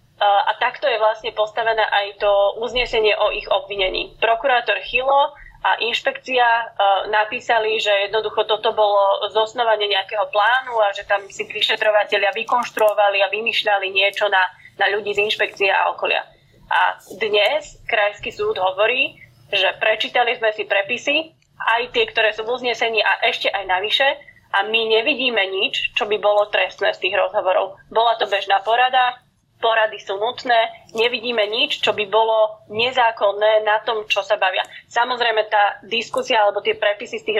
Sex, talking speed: female, 155 wpm